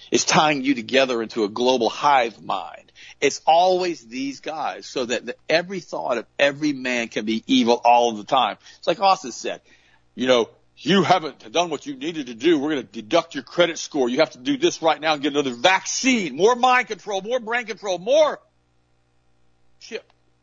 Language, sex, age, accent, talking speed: English, male, 50-69, American, 200 wpm